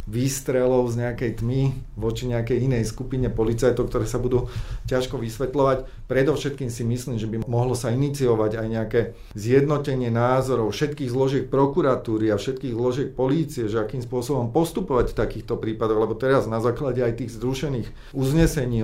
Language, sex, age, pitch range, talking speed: Slovak, male, 40-59, 115-135 Hz, 155 wpm